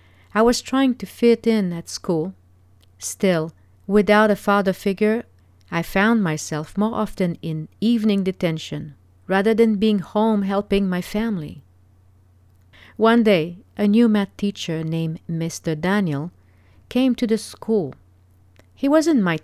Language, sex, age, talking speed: English, female, 40-59, 135 wpm